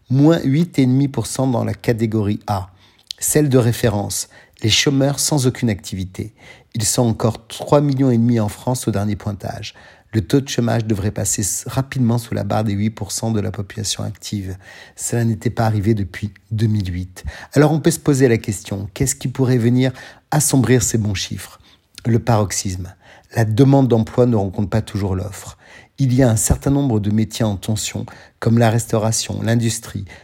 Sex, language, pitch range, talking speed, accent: male, French, 105-125 Hz, 175 wpm, French